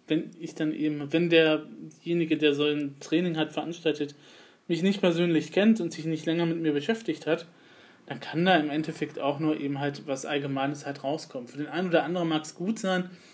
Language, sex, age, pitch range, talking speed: German, male, 20-39, 145-170 Hz, 205 wpm